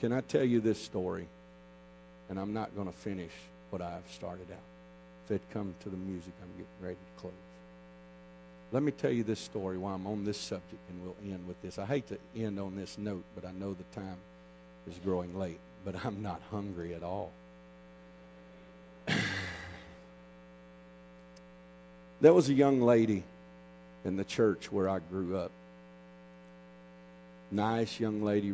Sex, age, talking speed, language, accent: male, 50-69, 165 wpm, English, American